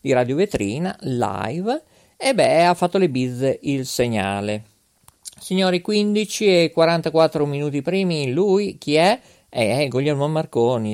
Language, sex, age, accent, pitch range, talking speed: Italian, male, 50-69, native, 120-160 Hz, 130 wpm